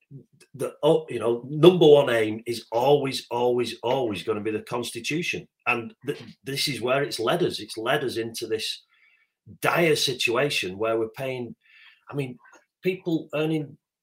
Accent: British